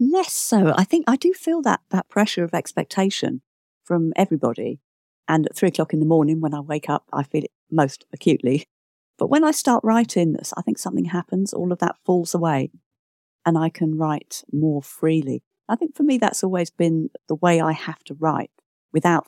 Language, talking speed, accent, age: English, 200 wpm, British, 50-69